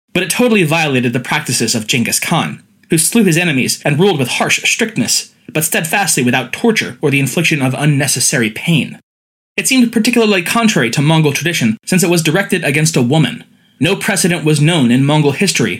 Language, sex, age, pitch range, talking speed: English, male, 20-39, 130-175 Hz, 185 wpm